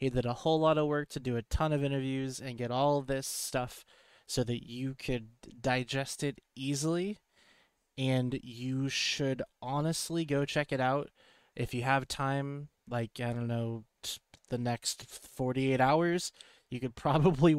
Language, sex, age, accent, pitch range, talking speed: English, male, 20-39, American, 120-145 Hz, 165 wpm